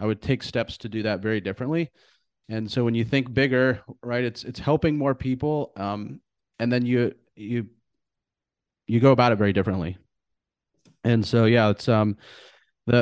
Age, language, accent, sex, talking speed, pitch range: 30-49, English, American, male, 175 wpm, 110-125 Hz